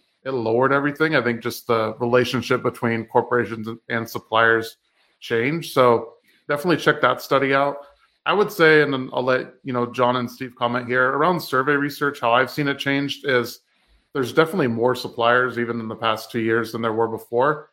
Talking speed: 190 wpm